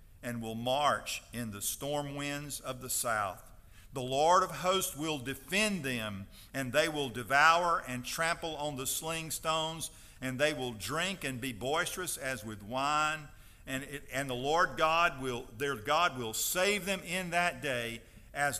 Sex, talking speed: male, 170 wpm